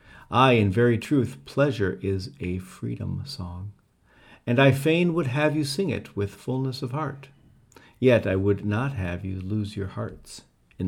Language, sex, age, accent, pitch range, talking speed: English, male, 40-59, American, 100-135 Hz, 170 wpm